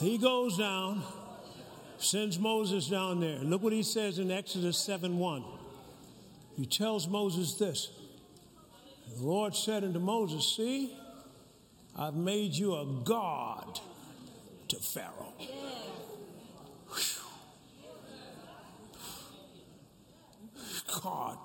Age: 60-79